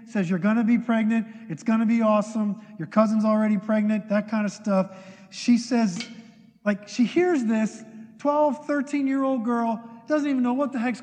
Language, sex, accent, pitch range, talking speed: English, male, American, 175-225 Hz, 185 wpm